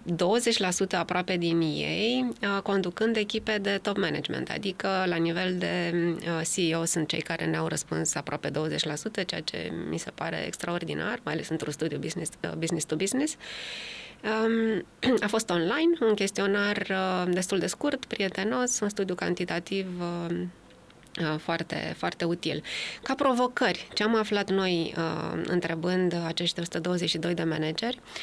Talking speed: 120 wpm